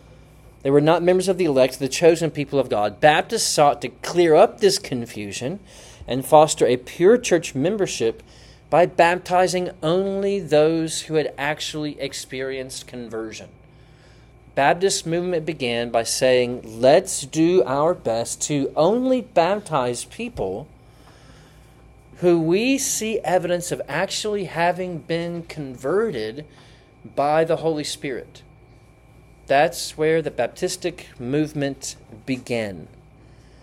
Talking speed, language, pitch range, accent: 120 wpm, English, 130-170 Hz, American